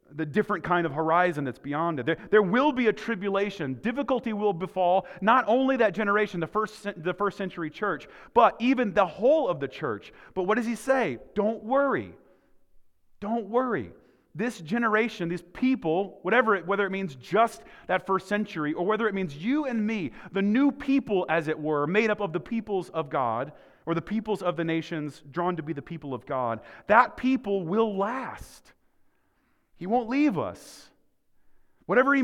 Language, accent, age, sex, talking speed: English, American, 30-49, male, 185 wpm